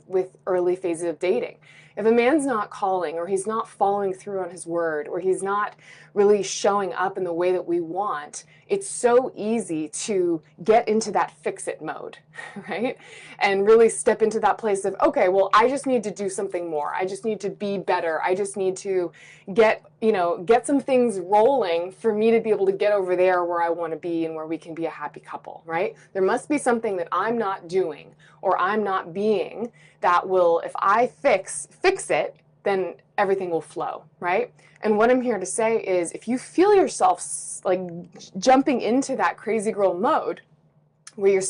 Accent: American